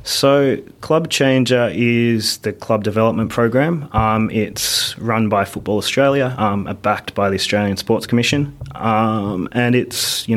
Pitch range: 100-115 Hz